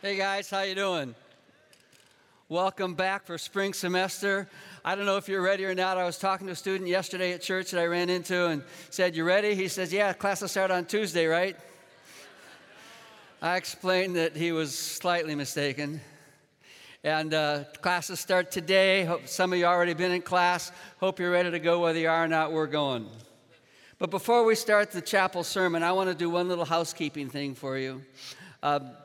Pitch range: 155-185 Hz